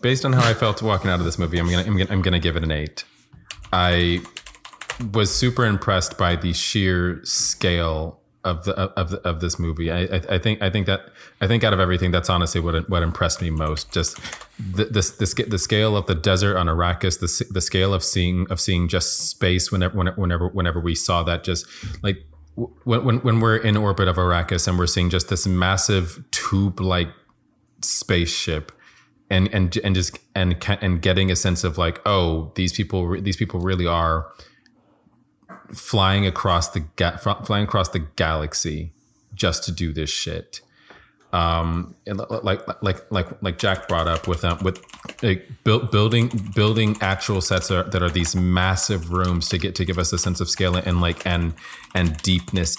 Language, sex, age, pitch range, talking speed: English, male, 30-49, 85-95 Hz, 190 wpm